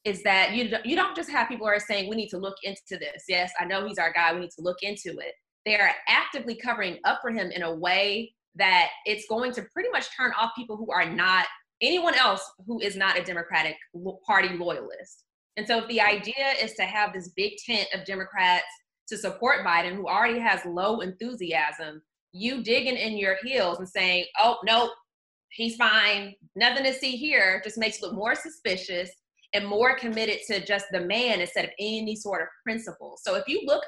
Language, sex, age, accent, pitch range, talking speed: English, female, 20-39, American, 185-235 Hz, 210 wpm